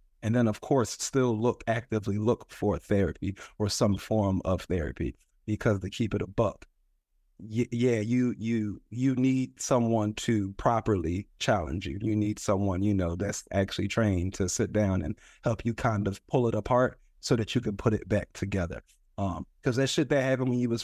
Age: 30-49